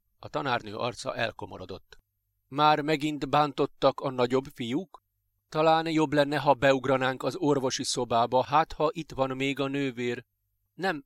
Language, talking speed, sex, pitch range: Hungarian, 140 wpm, male, 105-140 Hz